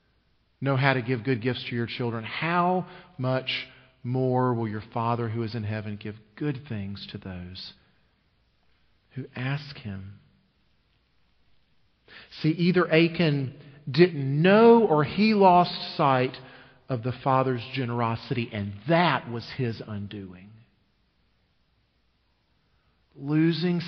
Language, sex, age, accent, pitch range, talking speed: English, male, 40-59, American, 115-145 Hz, 115 wpm